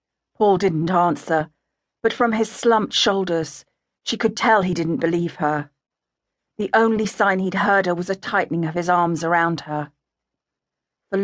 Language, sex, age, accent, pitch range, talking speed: English, female, 40-59, British, 165-200 Hz, 160 wpm